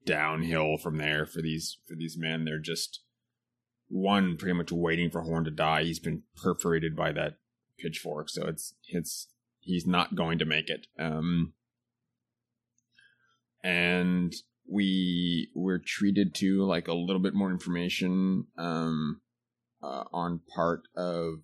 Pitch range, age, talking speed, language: 85-120 Hz, 30-49, 140 wpm, English